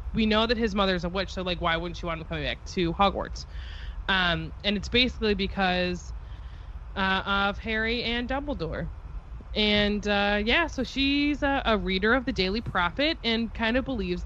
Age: 20-39